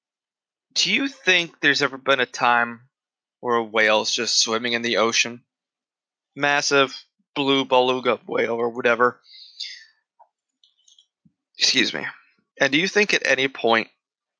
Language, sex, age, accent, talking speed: English, male, 20-39, American, 130 wpm